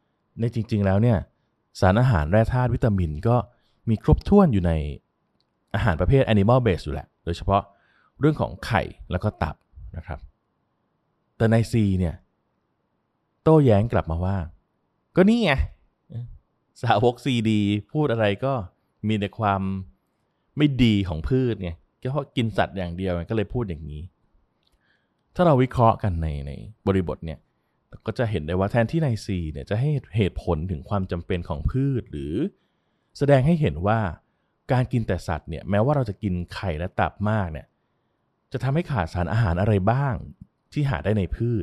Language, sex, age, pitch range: Thai, male, 20-39, 85-115 Hz